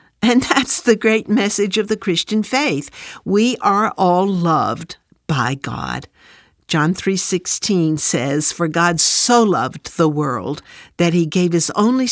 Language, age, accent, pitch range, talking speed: English, 60-79, American, 155-215 Hz, 145 wpm